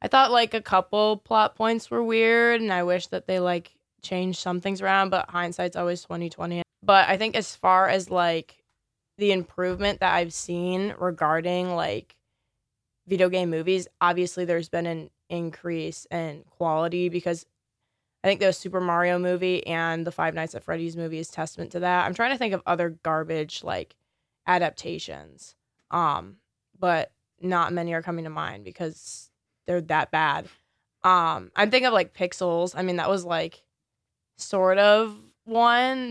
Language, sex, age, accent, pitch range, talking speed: English, female, 20-39, American, 165-190 Hz, 170 wpm